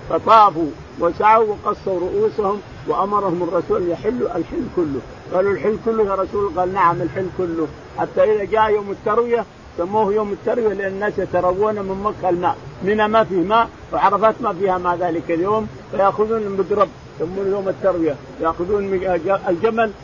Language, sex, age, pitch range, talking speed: Arabic, male, 50-69, 175-215 Hz, 150 wpm